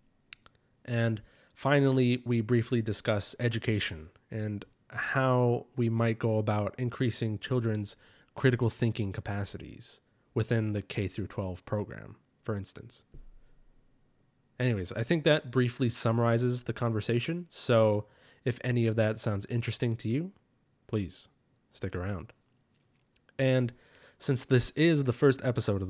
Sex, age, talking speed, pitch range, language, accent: male, 20-39, 120 wpm, 100-125 Hz, English, American